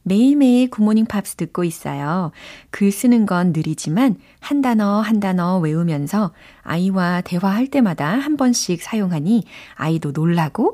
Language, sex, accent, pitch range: Korean, female, native, 155-225 Hz